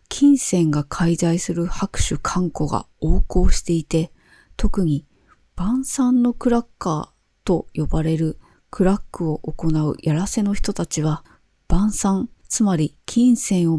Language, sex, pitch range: Japanese, female, 165-215 Hz